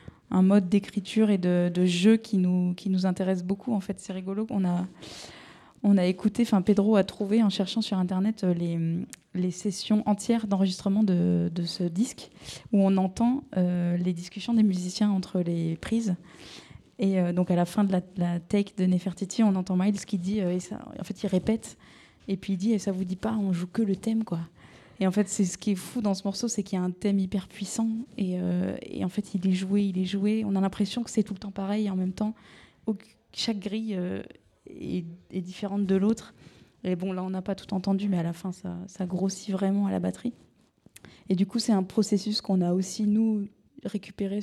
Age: 20-39